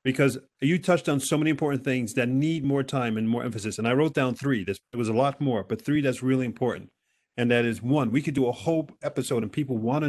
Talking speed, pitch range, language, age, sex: 260 wpm, 115-140 Hz, English, 40-59, male